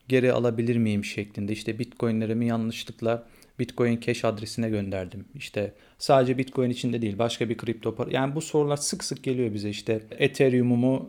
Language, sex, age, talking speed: Turkish, male, 40-59, 155 wpm